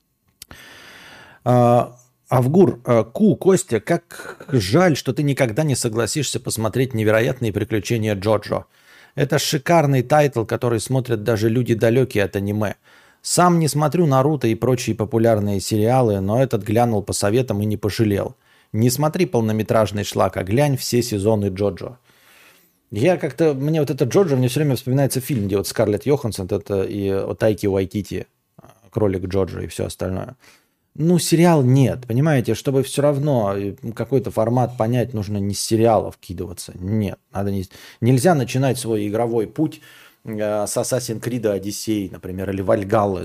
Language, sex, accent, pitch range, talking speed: Russian, male, native, 105-135 Hz, 150 wpm